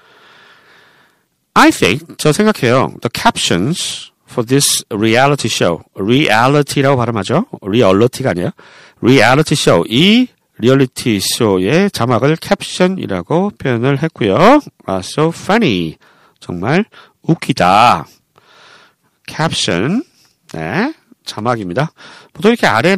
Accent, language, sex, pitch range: native, Korean, male, 120-185 Hz